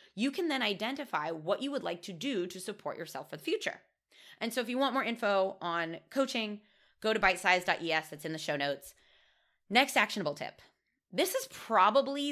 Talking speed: 195 wpm